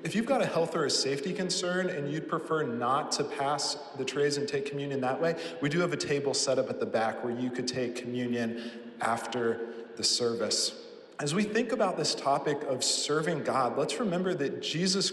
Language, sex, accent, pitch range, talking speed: English, male, American, 130-165 Hz, 210 wpm